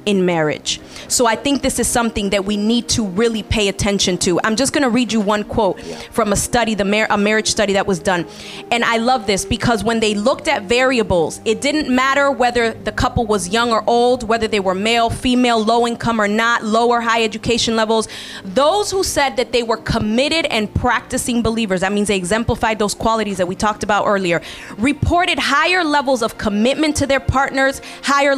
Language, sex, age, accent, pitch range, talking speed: English, female, 20-39, American, 215-265 Hz, 205 wpm